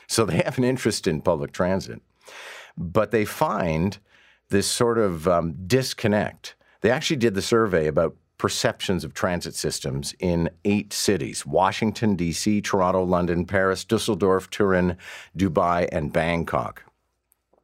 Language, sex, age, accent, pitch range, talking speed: English, male, 50-69, American, 85-105 Hz, 135 wpm